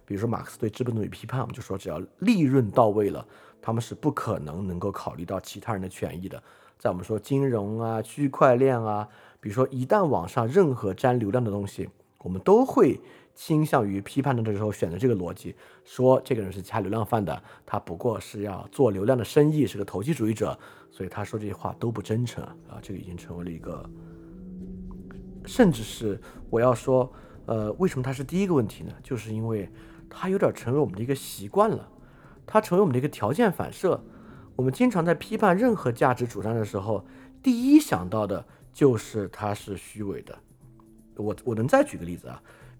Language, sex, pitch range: Chinese, male, 100-130 Hz